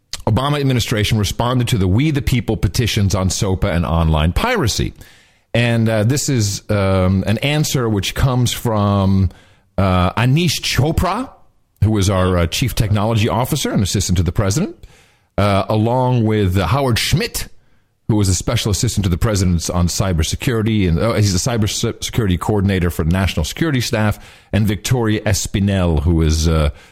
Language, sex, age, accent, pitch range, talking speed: English, male, 50-69, American, 95-125 Hz, 160 wpm